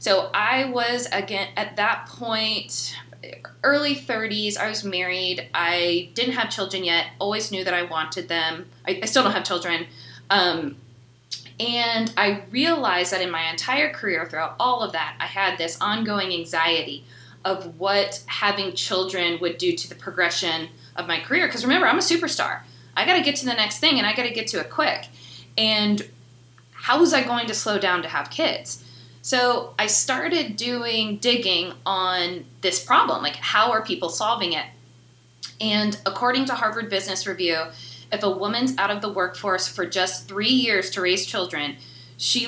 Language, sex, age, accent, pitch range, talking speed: English, female, 20-39, American, 160-220 Hz, 180 wpm